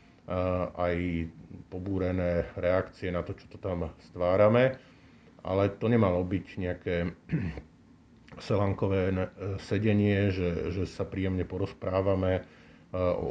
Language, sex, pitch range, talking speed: Slovak, male, 90-105 Hz, 100 wpm